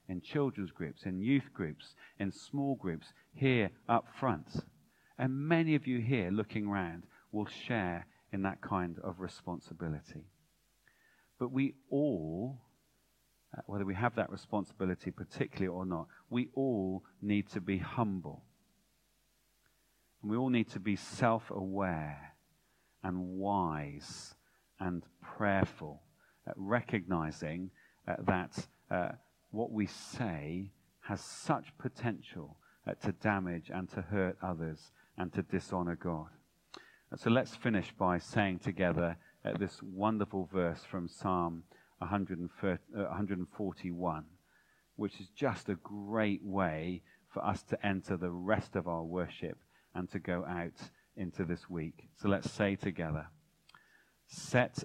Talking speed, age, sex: 125 wpm, 40-59, male